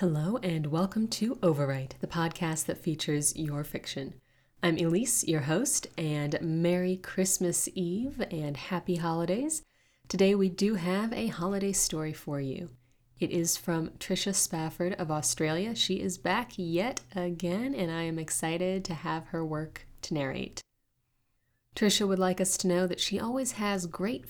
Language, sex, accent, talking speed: English, female, American, 160 wpm